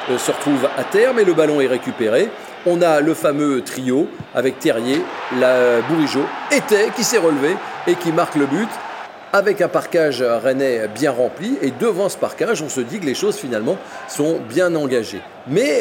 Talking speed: 180 wpm